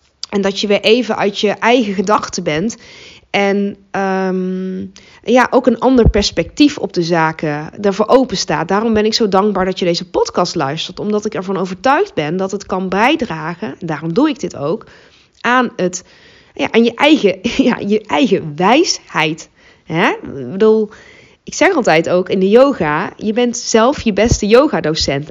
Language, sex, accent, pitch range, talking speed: Dutch, female, Dutch, 185-245 Hz, 175 wpm